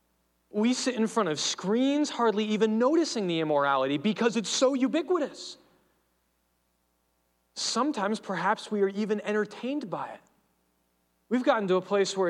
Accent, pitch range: American, 180-250 Hz